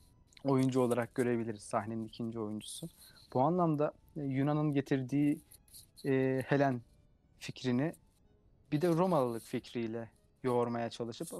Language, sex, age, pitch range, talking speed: Turkish, male, 30-49, 115-140 Hz, 100 wpm